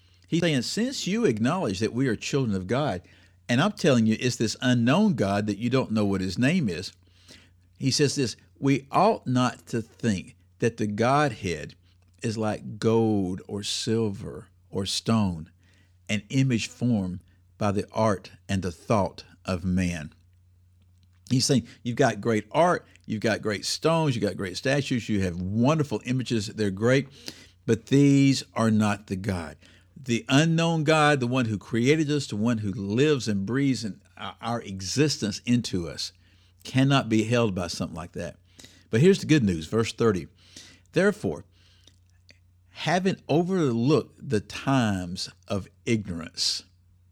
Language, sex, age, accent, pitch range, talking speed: English, male, 50-69, American, 90-125 Hz, 155 wpm